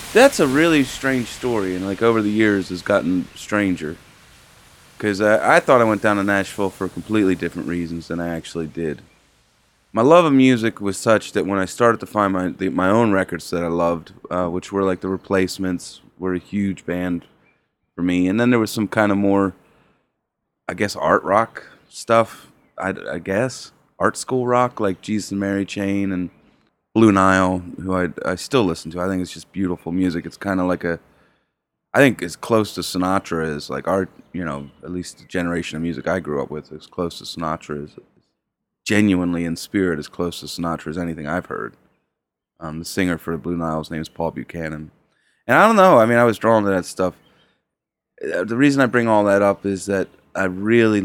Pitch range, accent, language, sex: 85-105 Hz, American, English, male